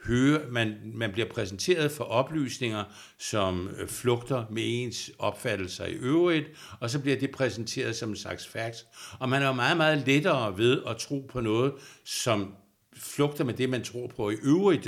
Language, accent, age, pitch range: Danish, native, 60-79, 110-140 Hz